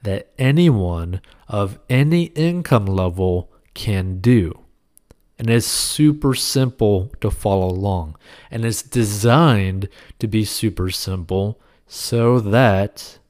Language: English